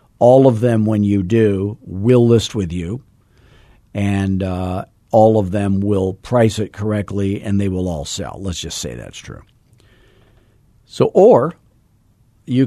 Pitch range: 95-120 Hz